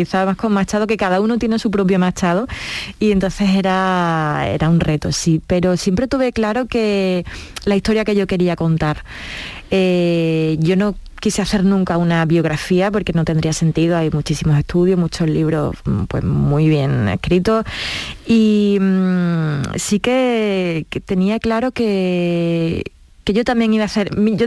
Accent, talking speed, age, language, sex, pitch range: Spanish, 155 wpm, 20-39, Spanish, female, 170-210 Hz